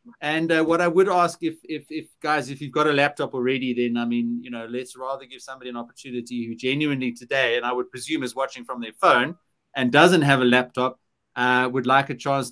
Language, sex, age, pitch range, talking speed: English, male, 30-49, 120-145 Hz, 235 wpm